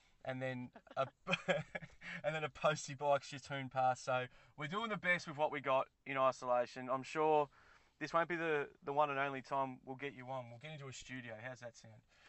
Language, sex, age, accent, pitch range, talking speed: English, male, 20-39, Australian, 125-145 Hz, 220 wpm